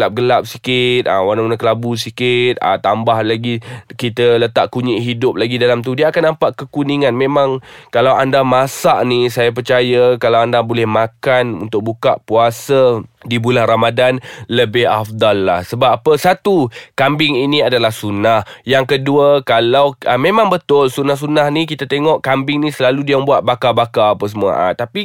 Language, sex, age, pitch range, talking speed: Malay, male, 20-39, 120-160 Hz, 155 wpm